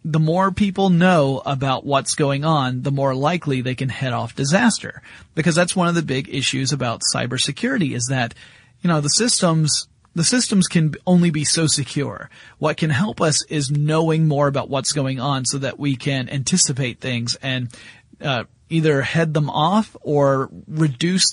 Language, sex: English, male